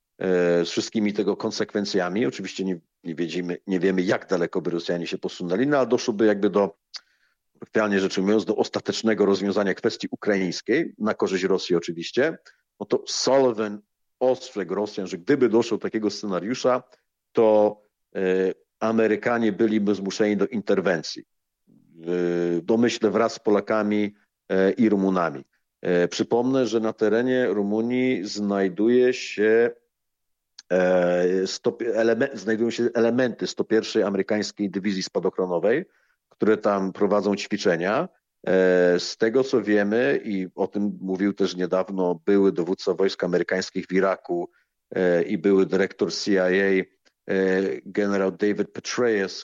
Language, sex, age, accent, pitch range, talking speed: Polish, male, 50-69, native, 95-110 Hz, 120 wpm